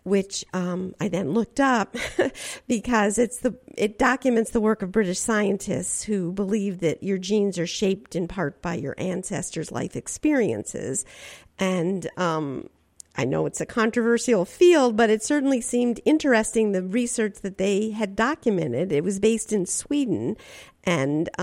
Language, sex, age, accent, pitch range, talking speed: English, female, 50-69, American, 185-235 Hz, 155 wpm